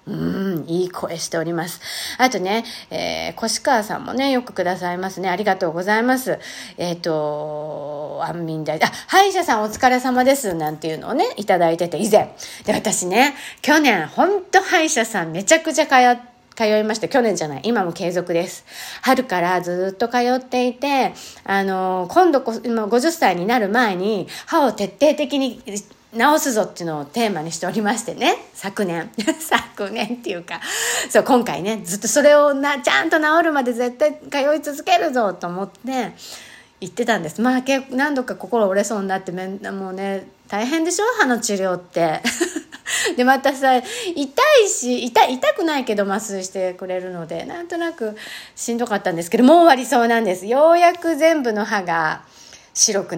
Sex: female